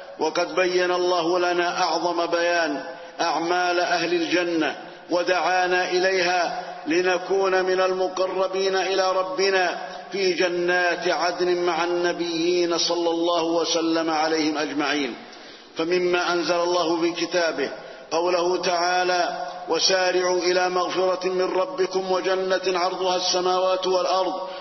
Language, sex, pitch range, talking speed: Arabic, male, 175-185 Hz, 100 wpm